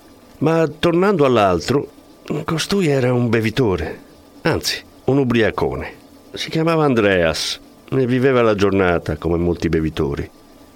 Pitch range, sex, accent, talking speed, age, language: 90-130 Hz, male, native, 110 wpm, 50-69, Italian